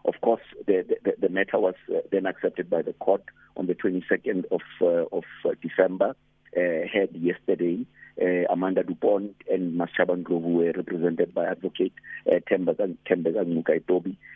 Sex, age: male, 50-69